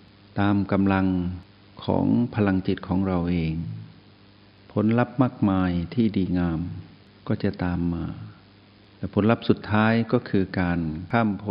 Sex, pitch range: male, 90-105 Hz